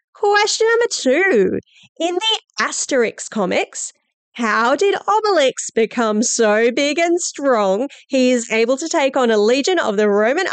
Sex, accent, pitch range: female, Australian, 225-345 Hz